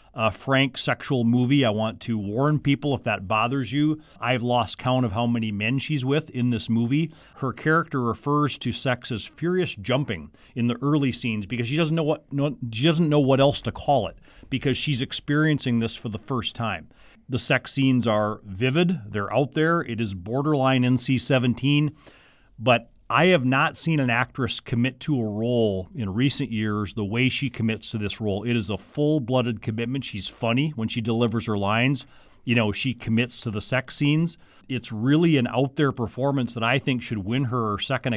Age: 40-59